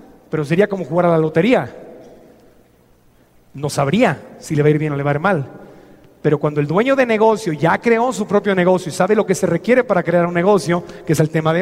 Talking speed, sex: 245 wpm, male